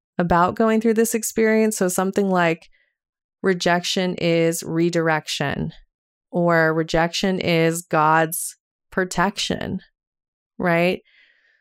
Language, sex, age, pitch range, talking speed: English, female, 20-39, 175-215 Hz, 90 wpm